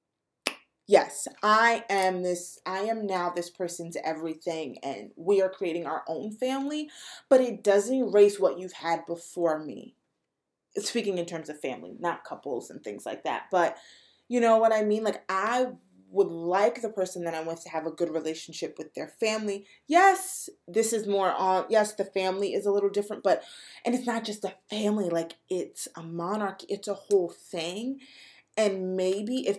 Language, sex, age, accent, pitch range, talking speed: English, female, 20-39, American, 175-240 Hz, 185 wpm